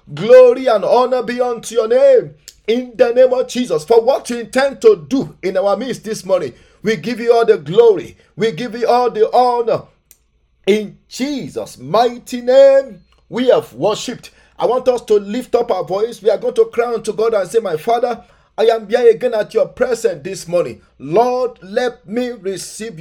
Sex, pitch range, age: male, 225-270 Hz, 50-69